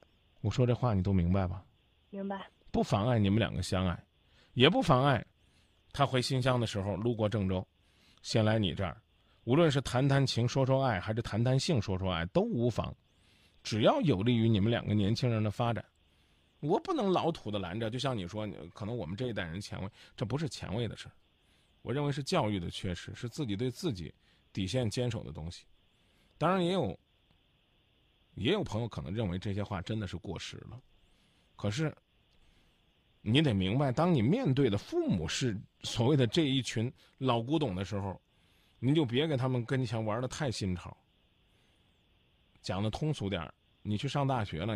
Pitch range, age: 95-130 Hz, 20-39